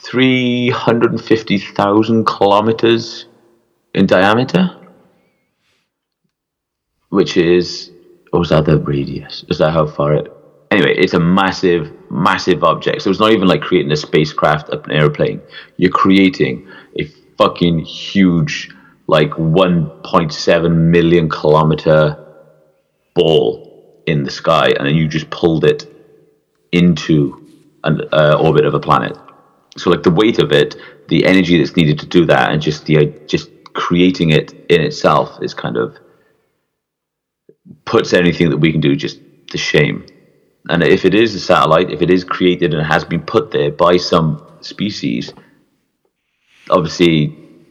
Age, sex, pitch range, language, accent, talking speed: 30-49, male, 80-95 Hz, English, British, 140 wpm